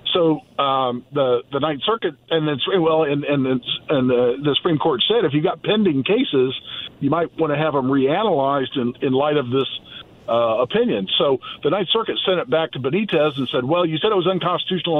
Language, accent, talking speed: English, American, 210 wpm